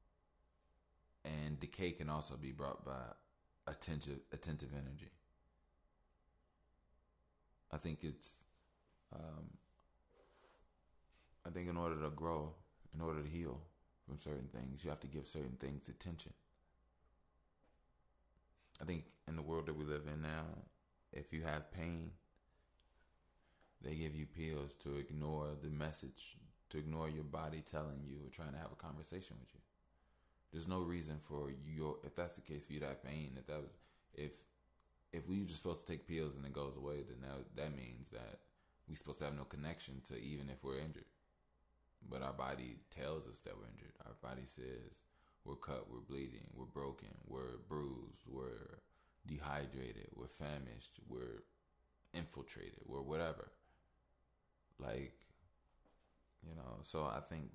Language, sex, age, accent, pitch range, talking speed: English, male, 30-49, American, 65-80 Hz, 155 wpm